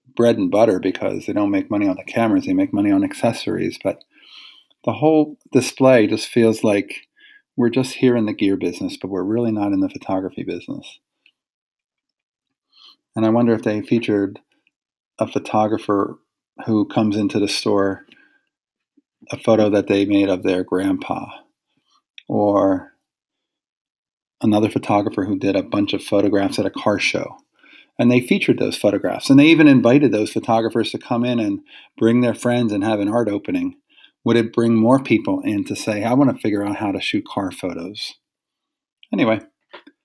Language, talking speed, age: English, 170 wpm, 40-59